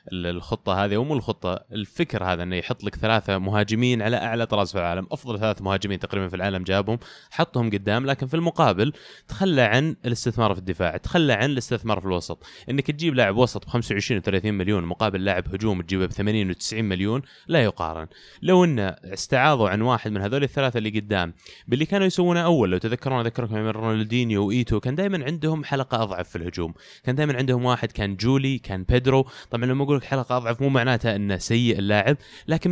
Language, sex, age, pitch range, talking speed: Arabic, male, 20-39, 100-145 Hz, 190 wpm